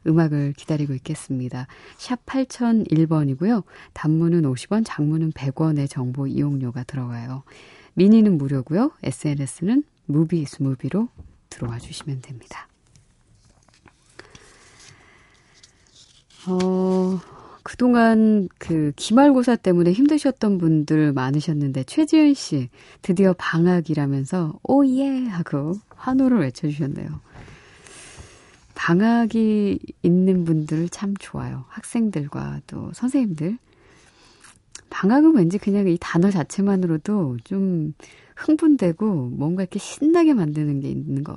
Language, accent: Korean, native